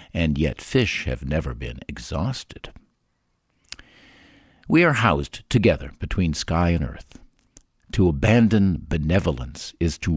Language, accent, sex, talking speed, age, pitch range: English, American, male, 120 wpm, 60-79, 80-120 Hz